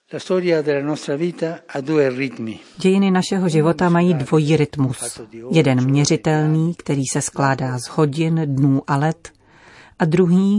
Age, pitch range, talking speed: 40-59, 140-170 Hz, 100 wpm